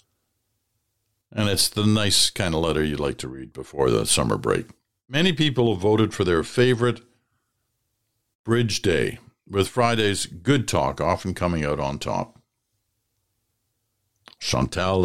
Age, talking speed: 60-79, 135 wpm